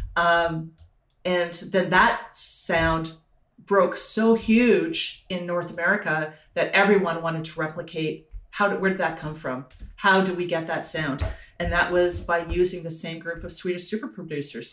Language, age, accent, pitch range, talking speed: English, 40-59, American, 160-185 Hz, 165 wpm